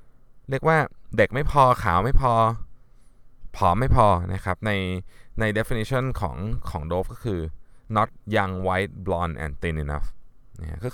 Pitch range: 85-125 Hz